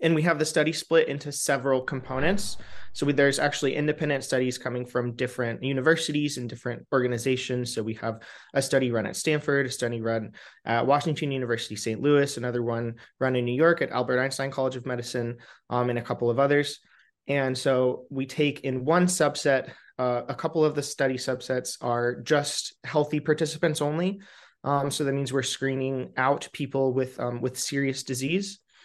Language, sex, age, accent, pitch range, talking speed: English, male, 30-49, American, 130-150 Hz, 180 wpm